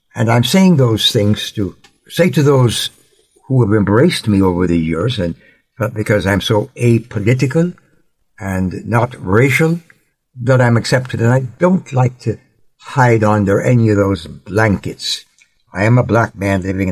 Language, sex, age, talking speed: English, male, 60-79, 155 wpm